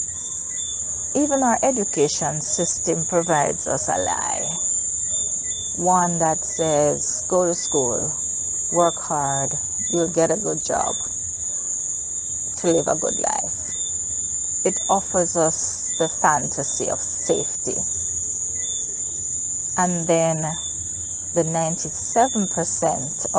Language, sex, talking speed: English, female, 95 wpm